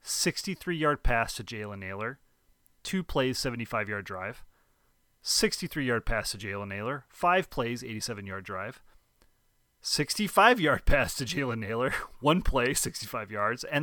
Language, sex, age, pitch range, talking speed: English, male, 30-49, 105-140 Hz, 120 wpm